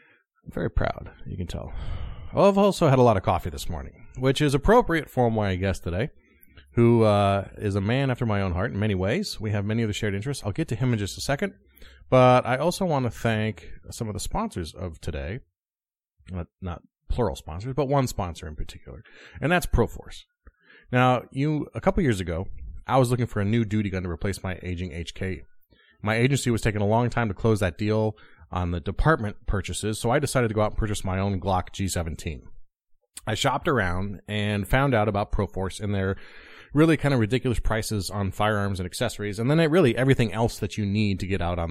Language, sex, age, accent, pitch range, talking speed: English, male, 30-49, American, 90-120 Hz, 215 wpm